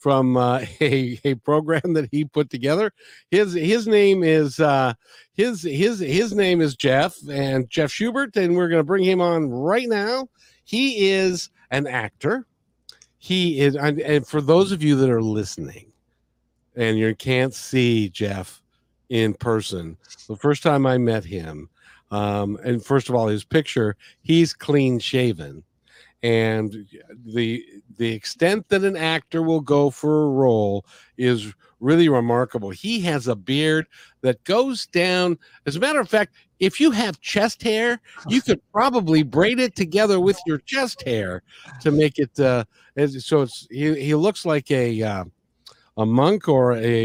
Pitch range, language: 115-180 Hz, English